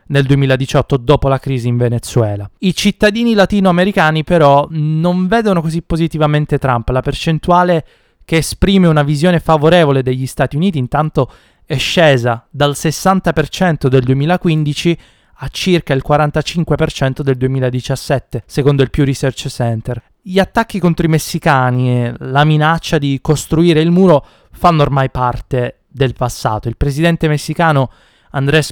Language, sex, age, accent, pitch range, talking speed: Italian, male, 20-39, native, 130-165 Hz, 135 wpm